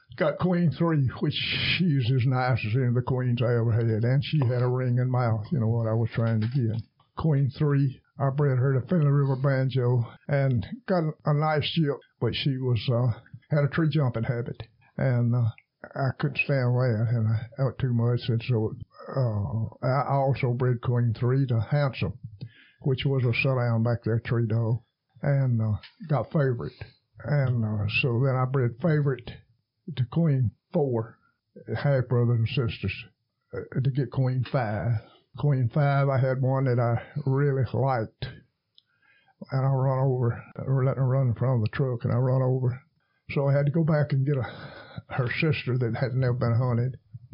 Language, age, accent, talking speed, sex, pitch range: English, 60-79, American, 185 wpm, male, 115-135 Hz